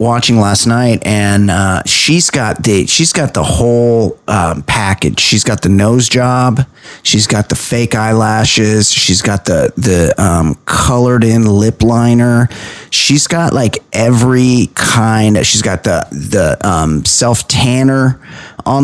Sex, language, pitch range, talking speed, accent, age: male, English, 105-130 Hz, 150 wpm, American, 30-49